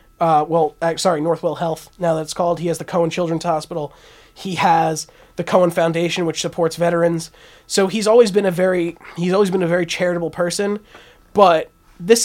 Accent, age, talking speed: American, 20-39, 180 wpm